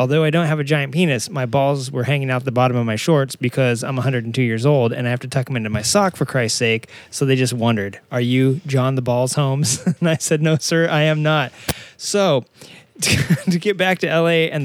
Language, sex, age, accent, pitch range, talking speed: English, male, 20-39, American, 135-170 Hz, 240 wpm